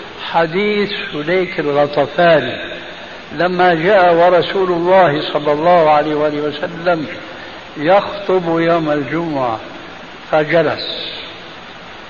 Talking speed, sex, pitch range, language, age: 75 wpm, male, 150-185 Hz, Arabic, 60-79